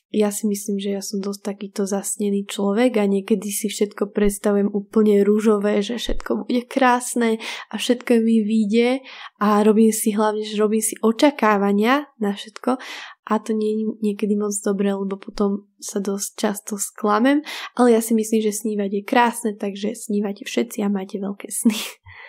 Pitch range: 210-235 Hz